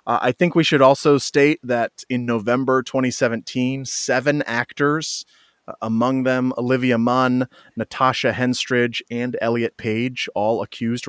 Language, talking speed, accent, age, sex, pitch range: English, 135 wpm, American, 30-49, male, 110-135 Hz